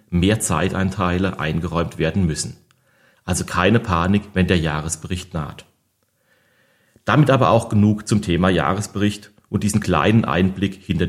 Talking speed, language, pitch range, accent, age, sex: 130 wpm, German, 90-110 Hz, German, 40-59, male